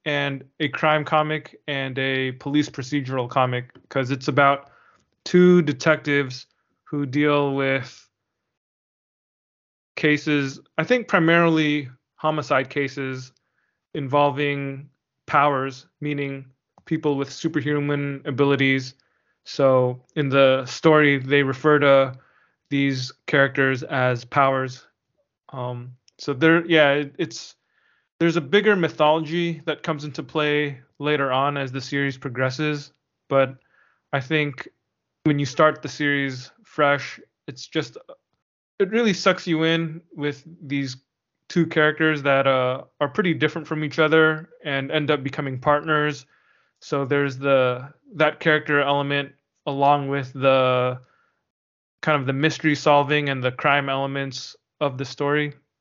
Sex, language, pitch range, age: male, English, 135-155 Hz, 20-39